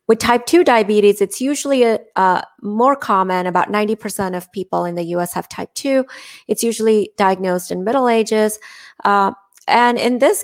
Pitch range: 195-240 Hz